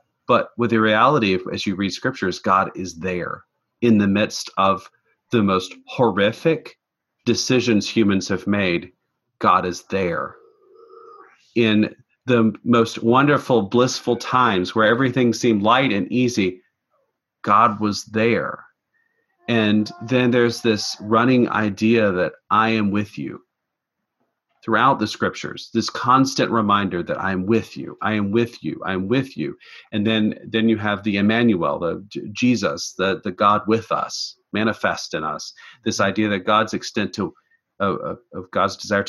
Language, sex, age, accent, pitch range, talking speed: English, male, 40-59, American, 105-125 Hz, 150 wpm